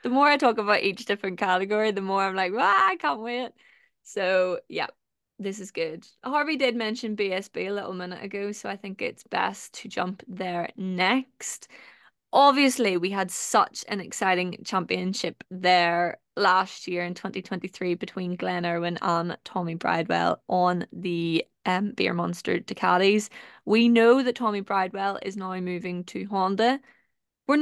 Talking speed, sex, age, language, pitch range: 160 wpm, female, 20-39, English, 180-220 Hz